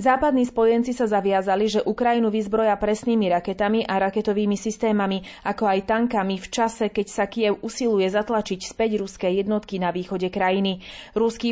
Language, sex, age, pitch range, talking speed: Slovak, female, 30-49, 195-225 Hz, 150 wpm